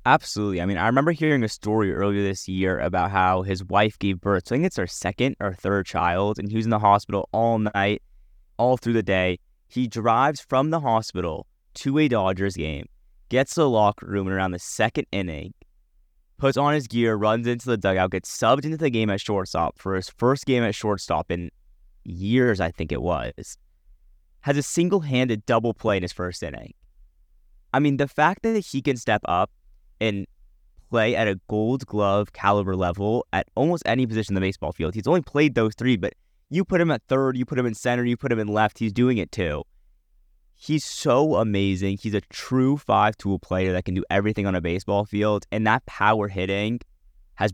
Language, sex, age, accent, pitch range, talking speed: English, male, 20-39, American, 90-120 Hz, 205 wpm